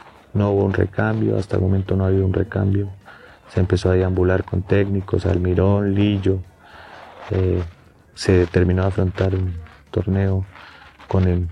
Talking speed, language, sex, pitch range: 145 wpm, Portuguese, male, 90-100 Hz